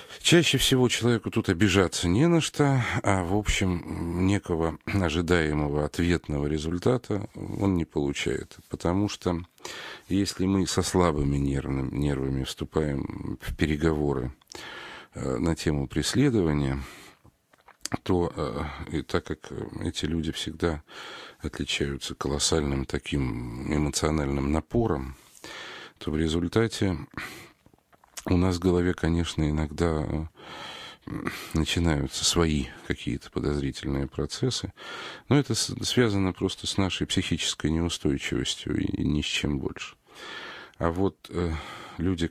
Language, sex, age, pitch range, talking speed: Russian, male, 50-69, 75-95 Hz, 105 wpm